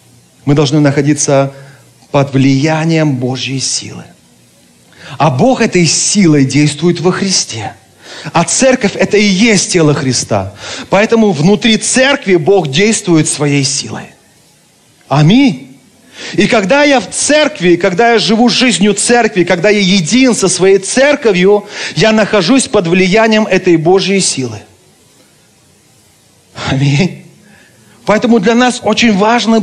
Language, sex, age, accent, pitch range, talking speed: Russian, male, 40-59, native, 180-235 Hz, 115 wpm